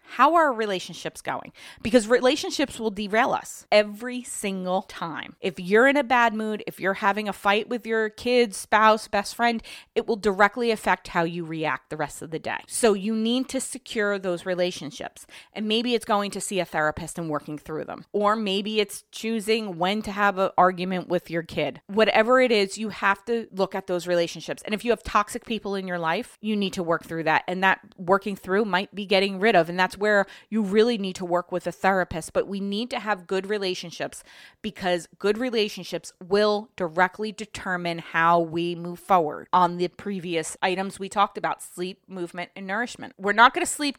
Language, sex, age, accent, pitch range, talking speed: English, female, 30-49, American, 180-230 Hz, 205 wpm